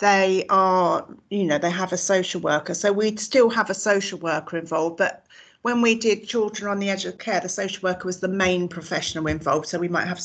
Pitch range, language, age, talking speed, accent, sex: 175-200 Hz, English, 40-59, 230 wpm, British, female